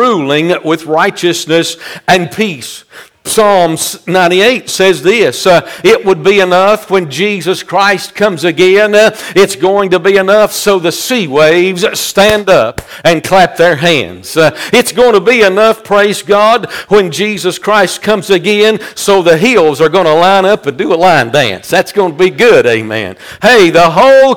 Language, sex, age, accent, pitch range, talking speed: English, male, 50-69, American, 165-200 Hz, 170 wpm